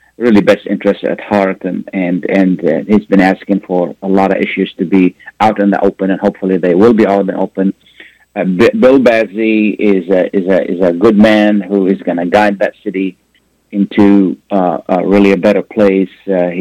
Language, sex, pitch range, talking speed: Arabic, male, 95-100 Hz, 210 wpm